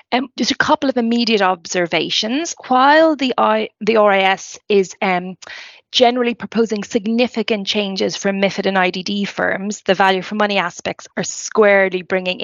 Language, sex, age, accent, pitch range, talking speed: English, female, 20-39, Irish, 180-230 Hz, 140 wpm